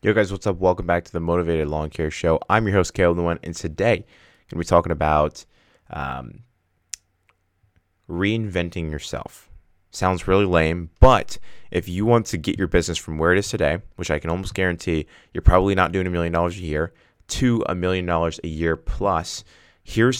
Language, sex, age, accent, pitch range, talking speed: English, male, 20-39, American, 80-95 Hz, 195 wpm